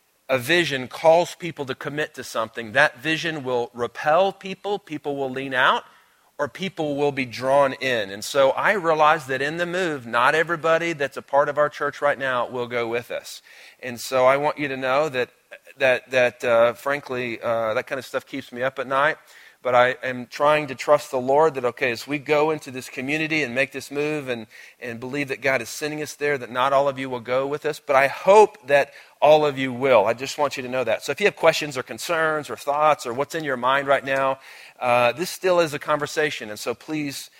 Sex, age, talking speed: male, 40-59, 235 wpm